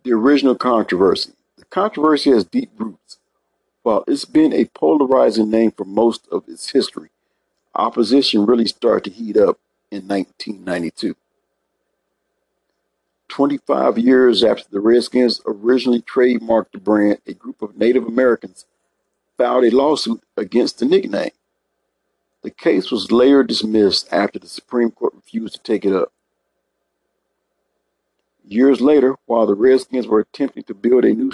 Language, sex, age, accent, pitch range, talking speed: English, male, 50-69, American, 110-140 Hz, 140 wpm